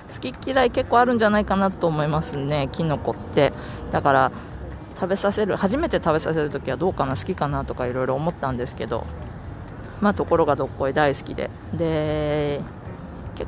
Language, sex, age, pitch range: Japanese, female, 20-39, 125-160 Hz